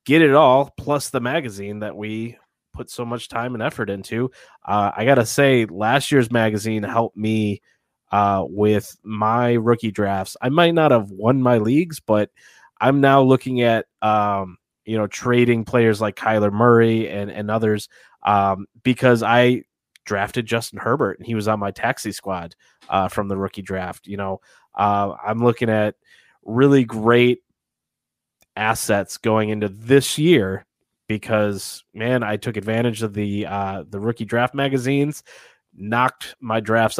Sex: male